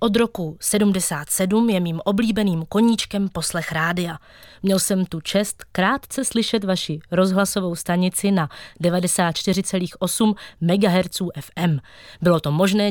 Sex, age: female, 20-39